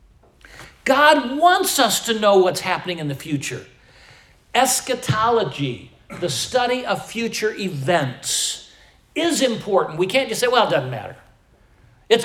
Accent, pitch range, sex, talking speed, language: American, 170-275 Hz, male, 130 wpm, English